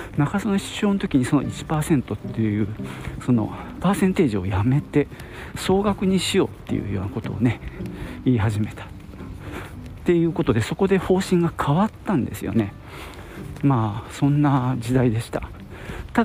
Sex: male